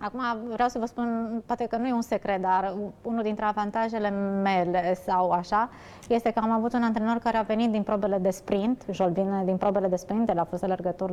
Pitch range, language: 185-230 Hz, Romanian